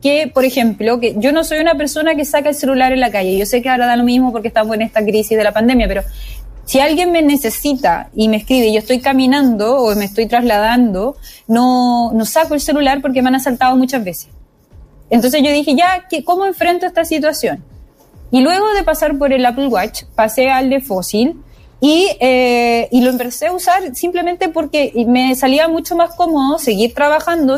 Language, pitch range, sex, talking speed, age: Spanish, 225-300 Hz, female, 200 wpm, 20-39